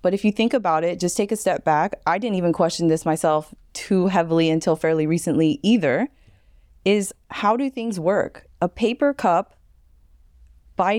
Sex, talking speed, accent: female, 175 wpm, American